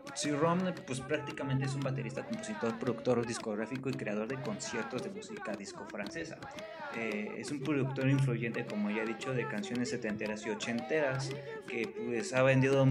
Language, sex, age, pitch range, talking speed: Spanish, male, 20-39, 120-145 Hz, 170 wpm